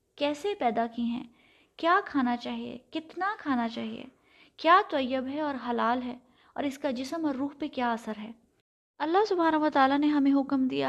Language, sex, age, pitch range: Urdu, female, 20-39, 240-320 Hz